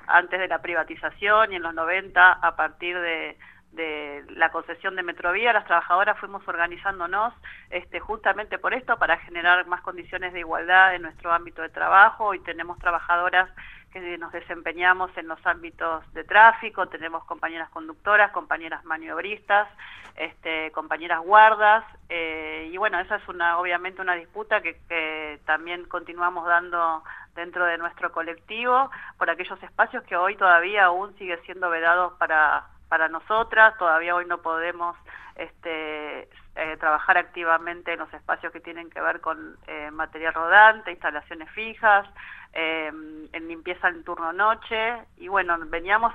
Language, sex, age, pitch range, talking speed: Spanish, female, 40-59, 165-195 Hz, 145 wpm